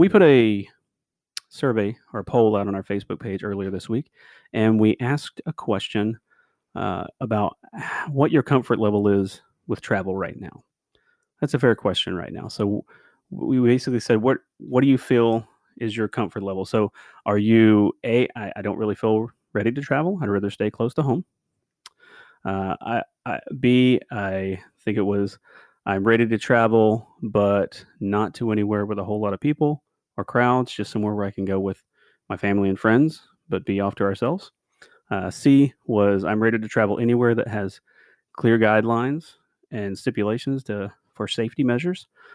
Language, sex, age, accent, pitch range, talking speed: English, male, 30-49, American, 100-120 Hz, 180 wpm